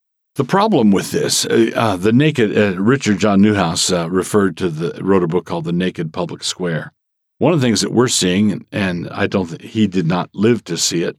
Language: English